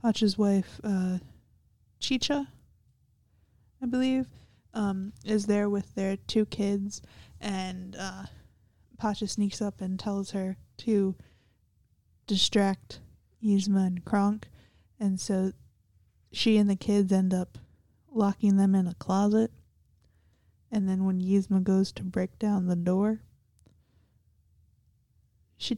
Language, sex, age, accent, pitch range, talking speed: English, female, 10-29, American, 175-215 Hz, 115 wpm